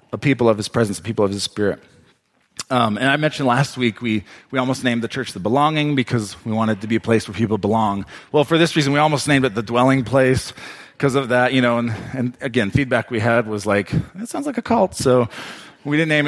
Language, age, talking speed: English, 40-59, 250 wpm